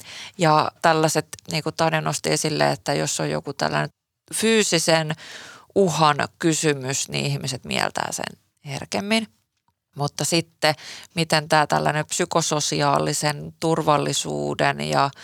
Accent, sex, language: native, female, Finnish